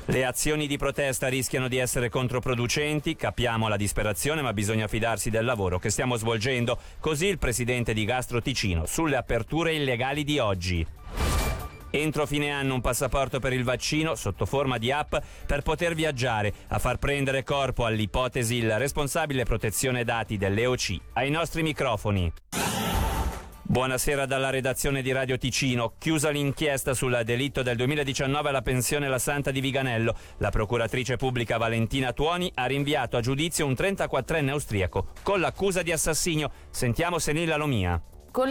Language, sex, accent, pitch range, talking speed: Italian, male, native, 125-205 Hz, 150 wpm